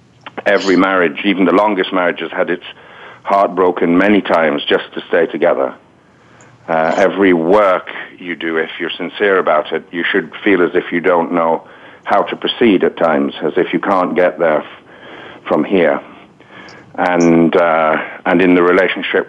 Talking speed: 170 wpm